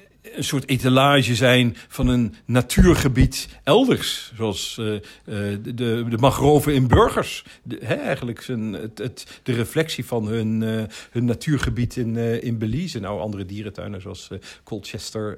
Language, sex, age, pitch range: Dutch, male, 50-69, 100-125 Hz